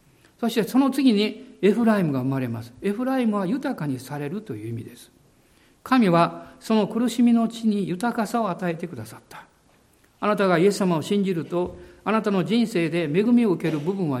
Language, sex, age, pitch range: Japanese, male, 60-79, 150-230 Hz